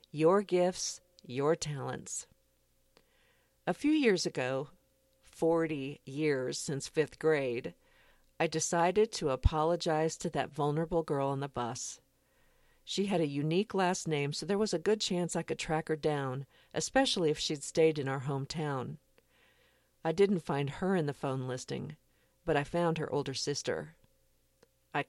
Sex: female